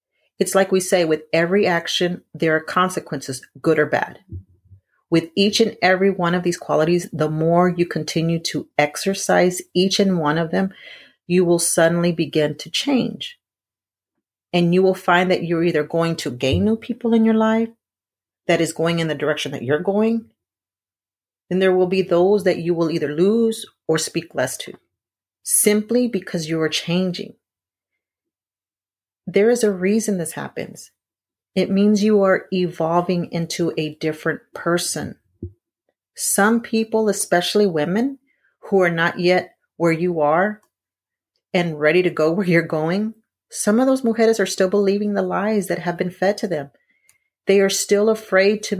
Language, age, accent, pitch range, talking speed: English, 40-59, American, 160-200 Hz, 165 wpm